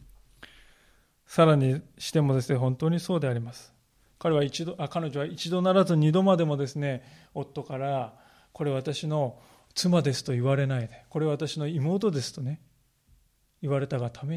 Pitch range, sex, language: 125-155 Hz, male, Japanese